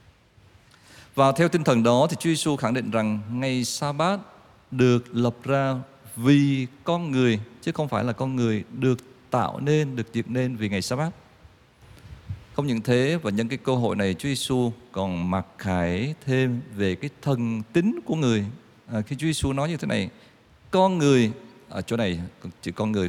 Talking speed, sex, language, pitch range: 185 wpm, male, Vietnamese, 105-140 Hz